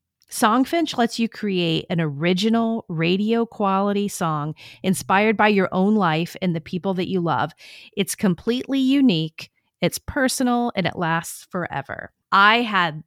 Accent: American